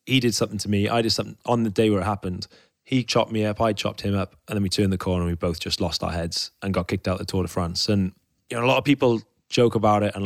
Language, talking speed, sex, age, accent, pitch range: English, 320 wpm, male, 20-39, British, 95-110 Hz